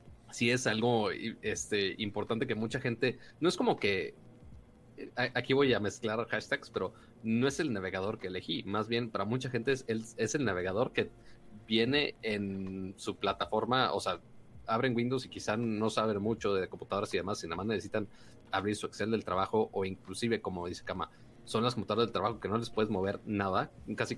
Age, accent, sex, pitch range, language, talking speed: 30-49, Mexican, male, 105-120 Hz, Spanish, 195 wpm